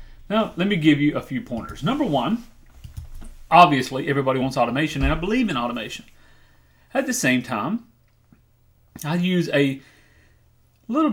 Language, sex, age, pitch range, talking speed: English, male, 30-49, 120-155 Hz, 145 wpm